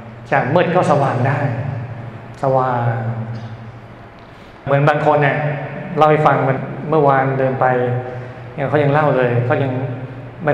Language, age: Thai, 20-39